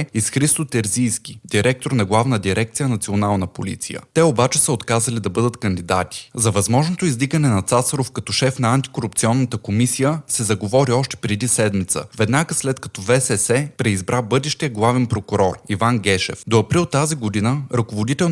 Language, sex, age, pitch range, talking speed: Bulgarian, male, 20-39, 105-135 Hz, 155 wpm